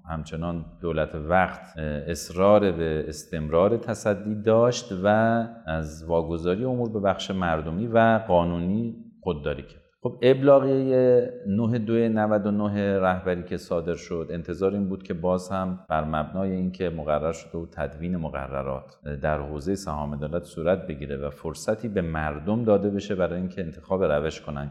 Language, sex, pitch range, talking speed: Persian, male, 85-115 Hz, 140 wpm